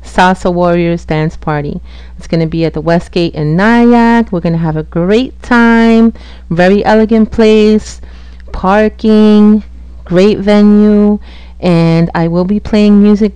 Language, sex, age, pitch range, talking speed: English, female, 30-49, 170-205 Hz, 145 wpm